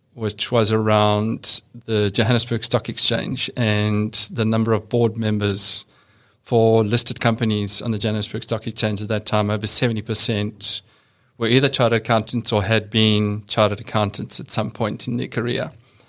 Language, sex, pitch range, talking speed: English, male, 105-115 Hz, 155 wpm